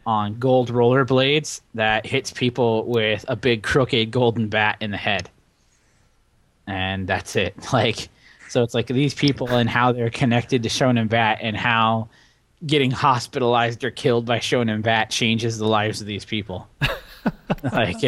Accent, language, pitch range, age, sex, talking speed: American, English, 110-130 Hz, 20-39, male, 155 wpm